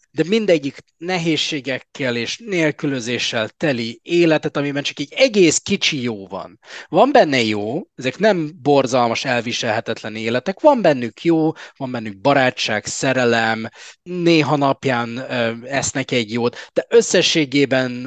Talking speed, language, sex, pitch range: 120 wpm, Hungarian, male, 120-160 Hz